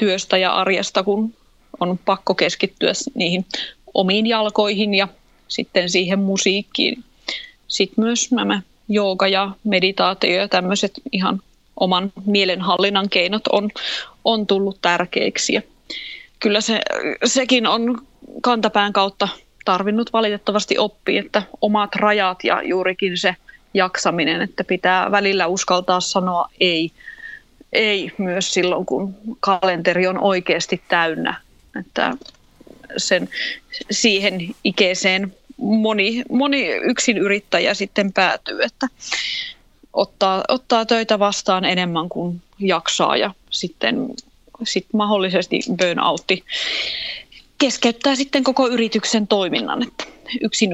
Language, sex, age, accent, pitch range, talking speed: Finnish, female, 20-39, native, 190-235 Hz, 105 wpm